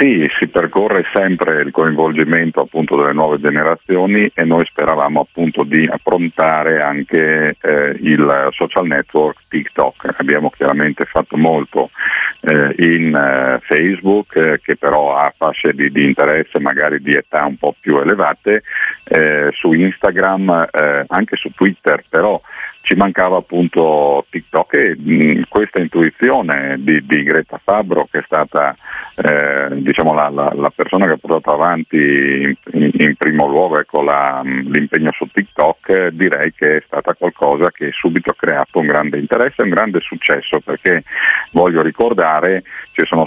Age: 50-69